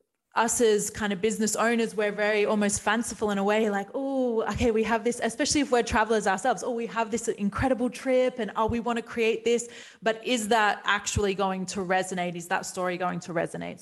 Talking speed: 215 wpm